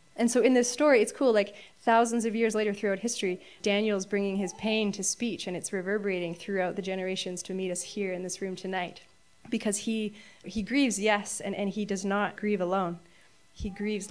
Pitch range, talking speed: 195-245 Hz, 205 wpm